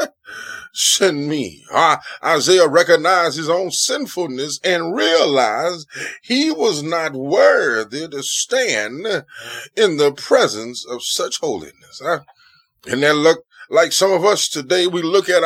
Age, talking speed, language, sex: 20-39, 130 wpm, English, male